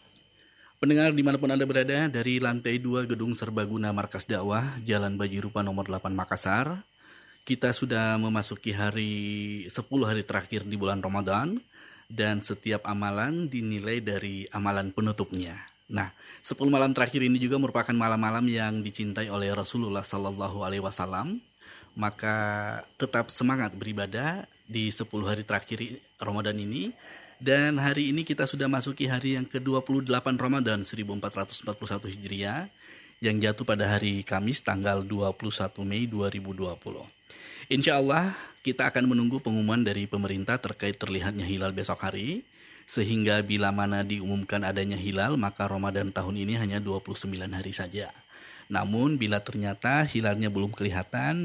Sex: male